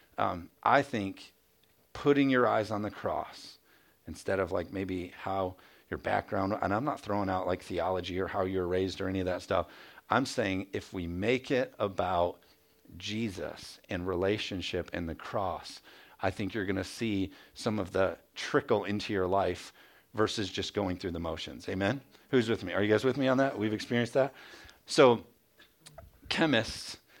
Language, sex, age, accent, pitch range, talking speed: English, male, 50-69, American, 95-120 Hz, 175 wpm